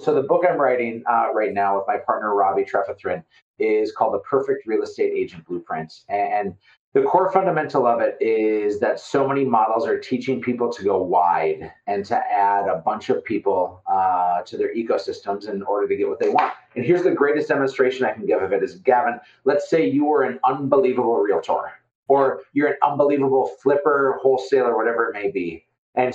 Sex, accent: male, American